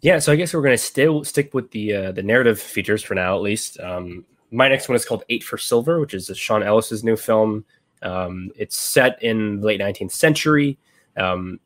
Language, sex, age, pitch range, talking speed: English, male, 20-39, 95-120 Hz, 220 wpm